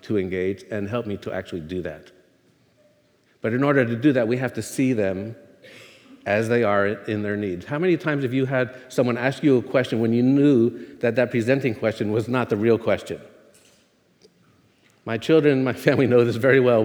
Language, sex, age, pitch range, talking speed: English, male, 50-69, 105-130 Hz, 205 wpm